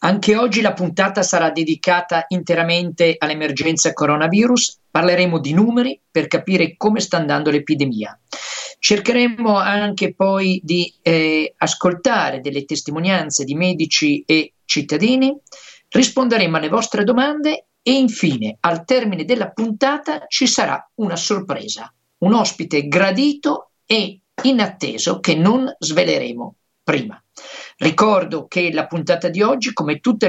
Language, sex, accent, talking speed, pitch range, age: Italian, male, native, 120 wpm, 160-225 Hz, 50-69